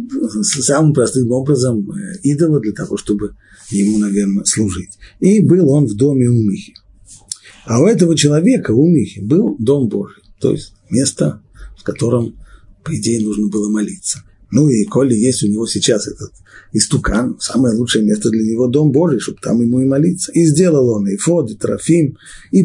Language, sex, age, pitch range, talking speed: Russian, male, 50-69, 105-155 Hz, 170 wpm